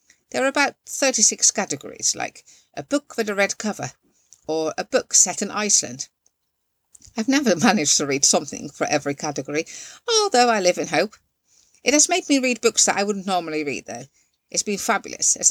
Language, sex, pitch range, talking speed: English, female, 150-245 Hz, 185 wpm